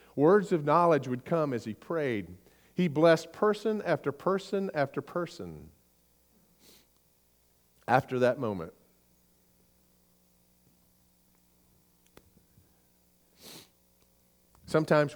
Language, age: English, 50-69